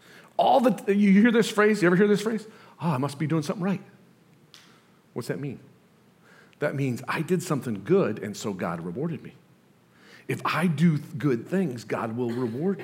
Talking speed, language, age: 185 wpm, English, 50-69